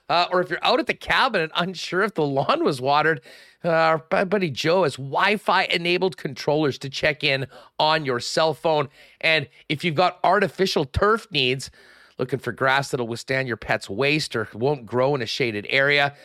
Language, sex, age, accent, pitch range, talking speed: English, male, 40-59, American, 130-175 Hz, 190 wpm